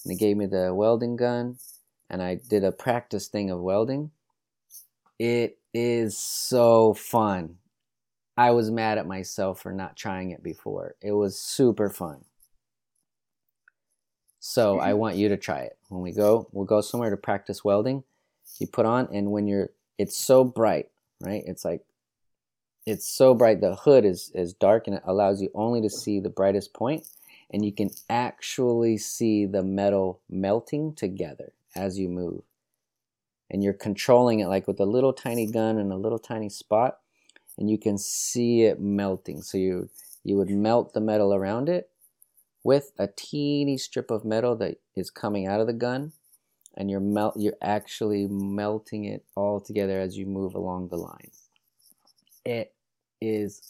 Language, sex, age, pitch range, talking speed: English, male, 30-49, 95-115 Hz, 170 wpm